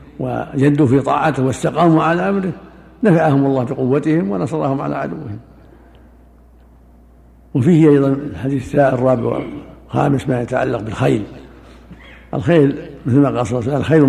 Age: 60-79